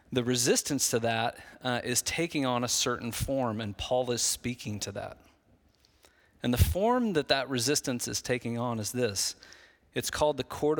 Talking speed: 180 wpm